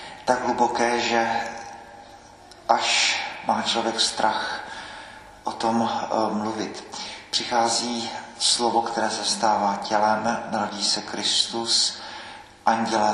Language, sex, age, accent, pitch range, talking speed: Czech, male, 40-59, native, 100-115 Hz, 95 wpm